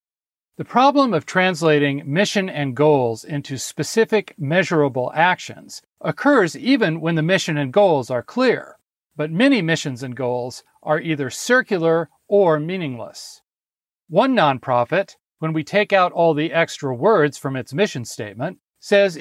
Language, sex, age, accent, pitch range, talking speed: English, male, 40-59, American, 145-200 Hz, 140 wpm